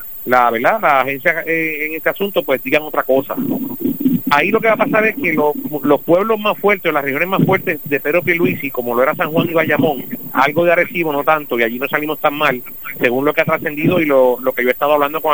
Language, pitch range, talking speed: Spanish, 140-175 Hz, 250 wpm